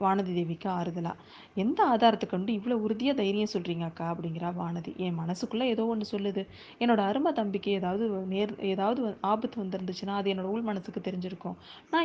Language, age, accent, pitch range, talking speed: Tamil, 20-39, native, 190-235 Hz, 145 wpm